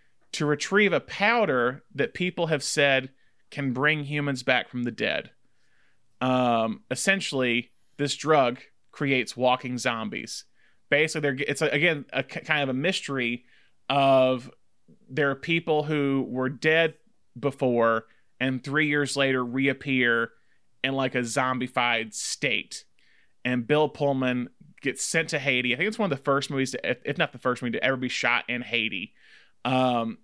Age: 30-49